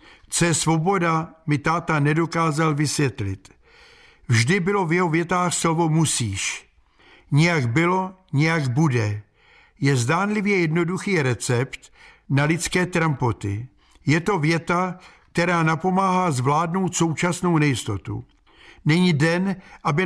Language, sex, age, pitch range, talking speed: Czech, male, 60-79, 140-175 Hz, 105 wpm